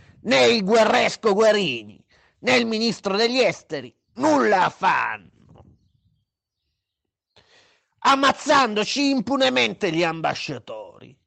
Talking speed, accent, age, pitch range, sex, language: 80 wpm, native, 40-59, 180-260 Hz, male, Italian